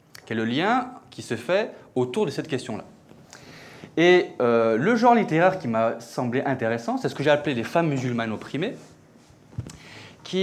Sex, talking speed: male, 175 wpm